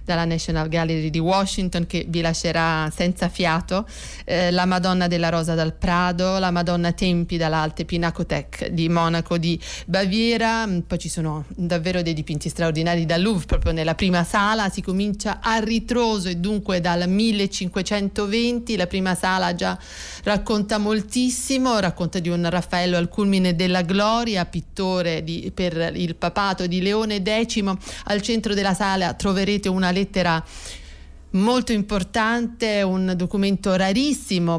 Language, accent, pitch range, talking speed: Italian, native, 170-200 Hz, 140 wpm